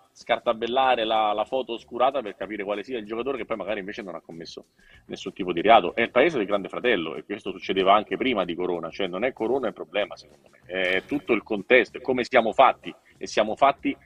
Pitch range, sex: 105-145 Hz, male